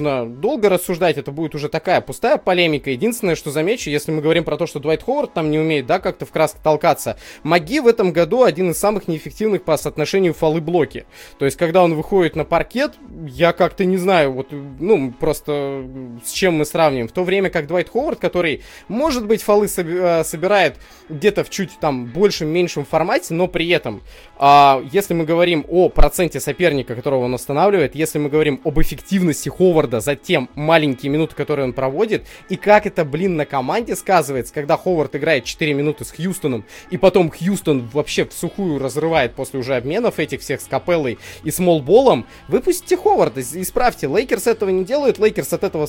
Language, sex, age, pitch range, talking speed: Russian, male, 20-39, 145-180 Hz, 185 wpm